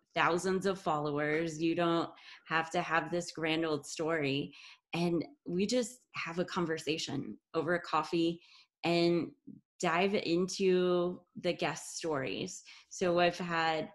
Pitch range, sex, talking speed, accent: 170-200 Hz, female, 130 wpm, American